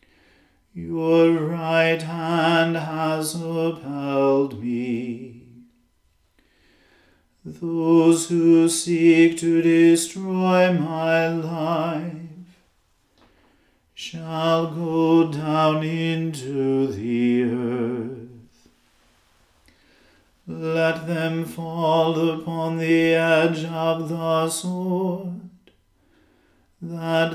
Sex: male